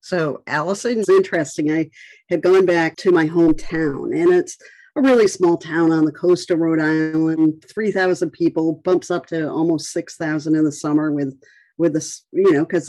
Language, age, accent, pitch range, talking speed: English, 50-69, American, 155-220 Hz, 175 wpm